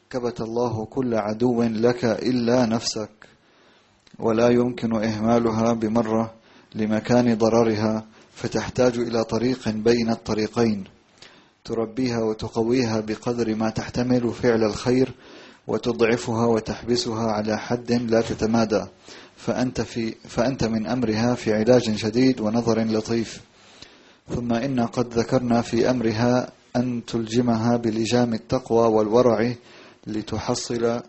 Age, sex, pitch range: 30-49, male, 110-120 Hz